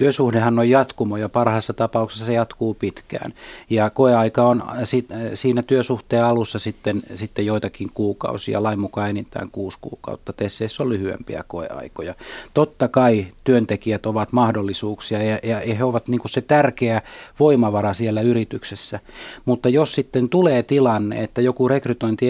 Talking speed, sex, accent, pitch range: 135 wpm, male, native, 110-130 Hz